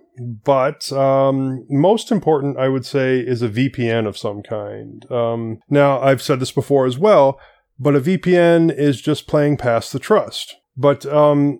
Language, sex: English, male